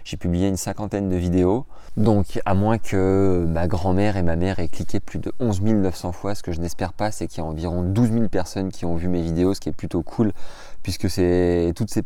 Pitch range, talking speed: 85-100 Hz, 240 wpm